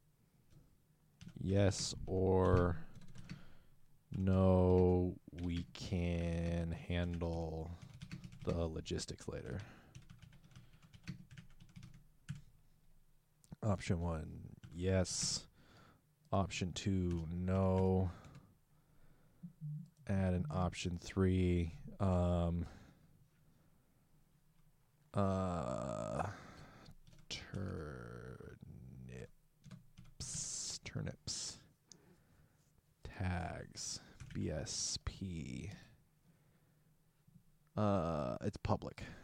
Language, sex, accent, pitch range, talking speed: English, male, American, 95-150 Hz, 45 wpm